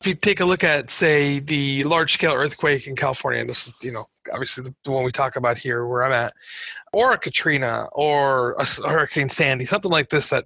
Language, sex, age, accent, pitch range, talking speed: English, male, 30-49, American, 135-165 Hz, 220 wpm